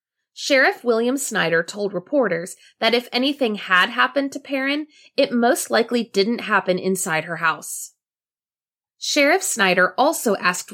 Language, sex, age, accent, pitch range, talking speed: English, female, 20-39, American, 185-270 Hz, 135 wpm